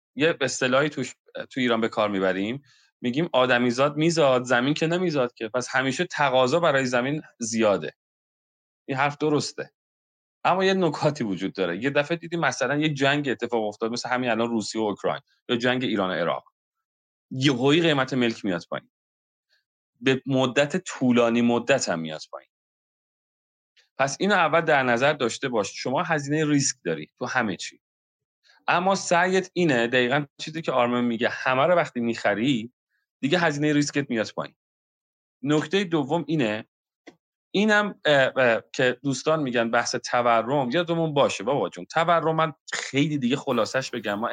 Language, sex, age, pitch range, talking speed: Persian, male, 30-49, 115-155 Hz, 155 wpm